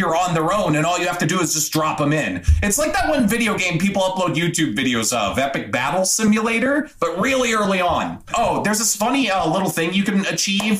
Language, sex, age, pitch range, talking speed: English, male, 30-49, 175-235 Hz, 240 wpm